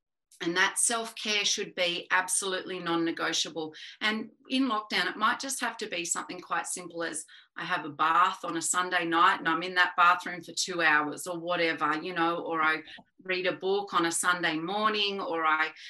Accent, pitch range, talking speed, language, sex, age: Australian, 175-210 Hz, 195 wpm, English, female, 30-49